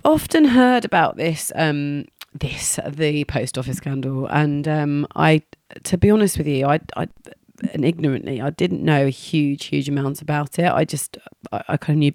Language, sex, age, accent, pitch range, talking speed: English, female, 30-49, British, 145-165 Hz, 190 wpm